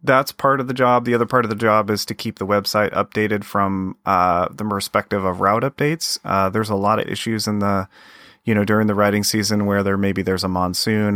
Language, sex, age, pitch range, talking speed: English, male, 30-49, 100-115 Hz, 235 wpm